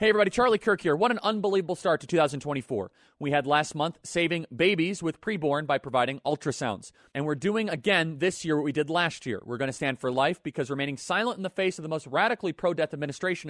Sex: male